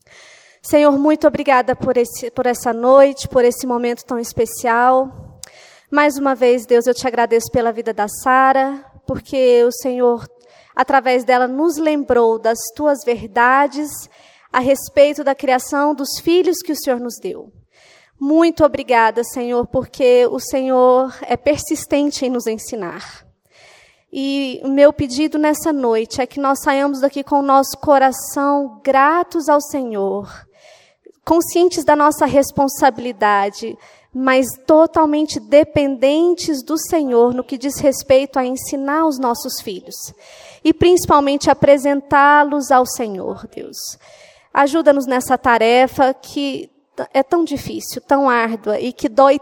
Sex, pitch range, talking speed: female, 250-295 Hz, 135 wpm